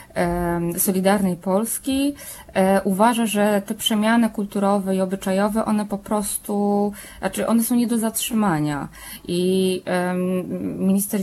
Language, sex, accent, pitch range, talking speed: Polish, female, native, 180-210 Hz, 105 wpm